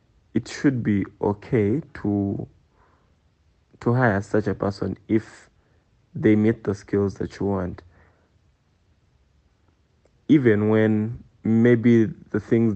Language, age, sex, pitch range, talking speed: English, 20-39, male, 100-115 Hz, 110 wpm